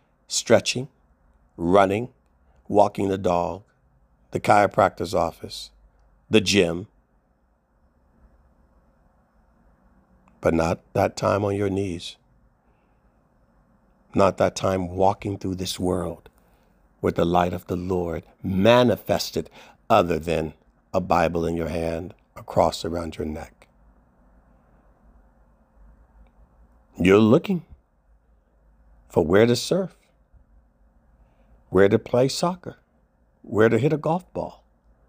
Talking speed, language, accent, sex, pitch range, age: 100 wpm, English, American, male, 70-100 Hz, 50-69